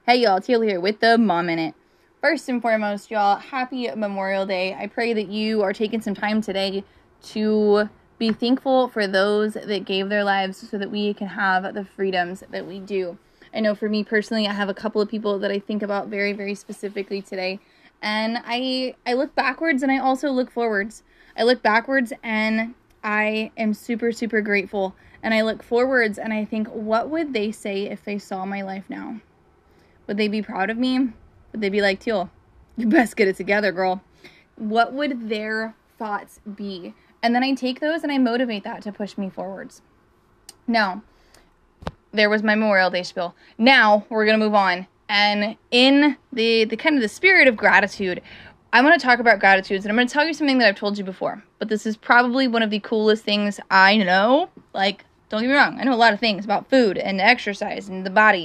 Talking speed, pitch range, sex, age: 210 wpm, 200-240 Hz, female, 20-39